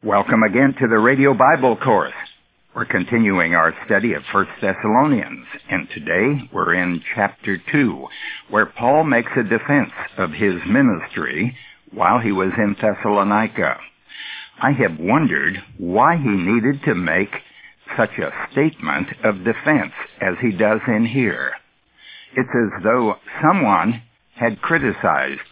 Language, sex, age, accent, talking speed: English, male, 60-79, American, 135 wpm